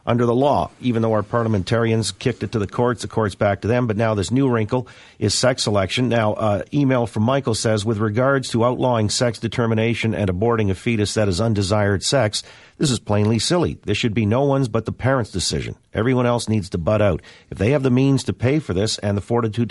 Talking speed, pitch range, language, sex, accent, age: 230 wpm, 100-125 Hz, English, male, American, 50-69